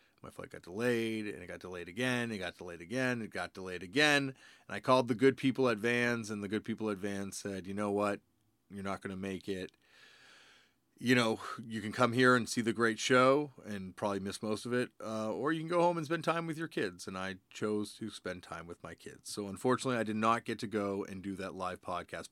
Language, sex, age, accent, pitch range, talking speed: English, male, 30-49, American, 95-125 Hz, 245 wpm